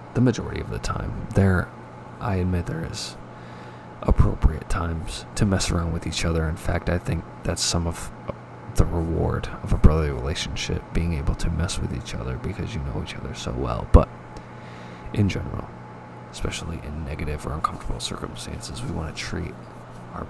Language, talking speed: English, 175 wpm